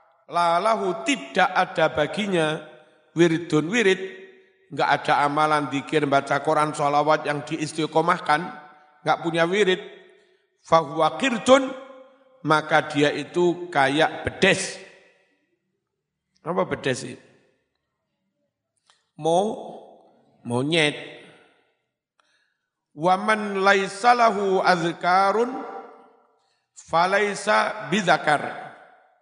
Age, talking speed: 50-69, 70 wpm